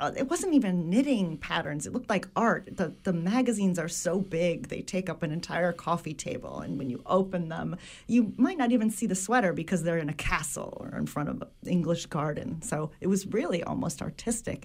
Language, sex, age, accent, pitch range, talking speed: English, female, 40-59, American, 160-225 Hz, 215 wpm